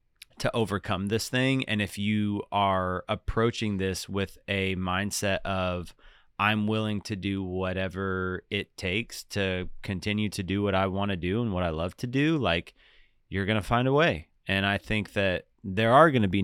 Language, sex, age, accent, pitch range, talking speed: English, male, 30-49, American, 95-115 Hz, 180 wpm